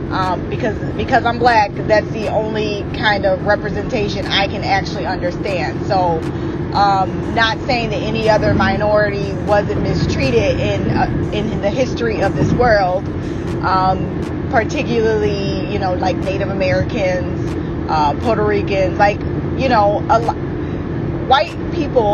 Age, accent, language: 20-39, American, English